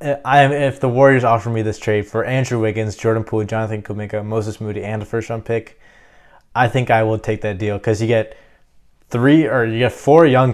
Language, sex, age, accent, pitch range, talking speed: English, male, 20-39, American, 105-120 Hz, 220 wpm